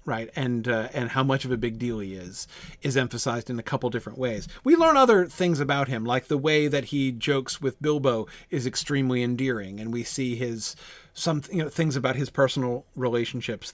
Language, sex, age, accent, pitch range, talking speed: English, male, 40-59, American, 125-155 Hz, 210 wpm